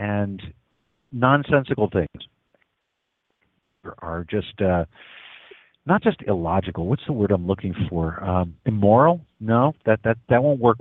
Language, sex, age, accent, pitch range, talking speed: English, male, 50-69, American, 95-130 Hz, 130 wpm